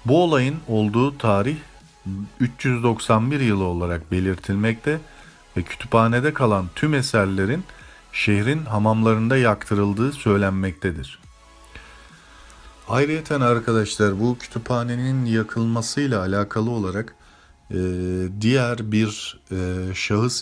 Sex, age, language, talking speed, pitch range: male, 40-59, Turkish, 80 wpm, 95-120 Hz